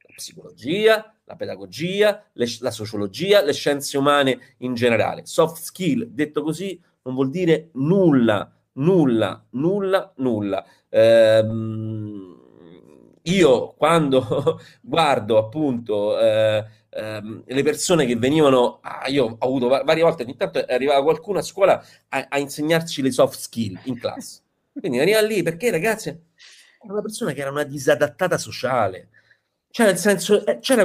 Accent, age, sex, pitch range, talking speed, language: native, 40-59, male, 120-190 Hz, 135 wpm, Italian